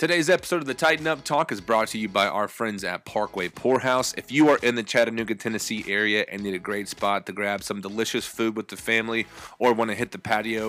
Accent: American